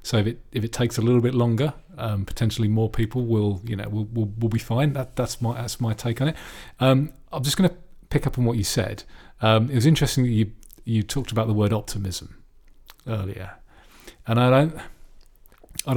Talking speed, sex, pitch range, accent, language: 220 wpm, male, 105-125 Hz, British, English